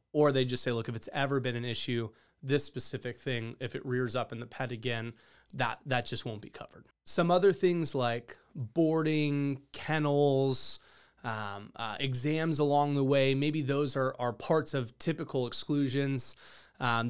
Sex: male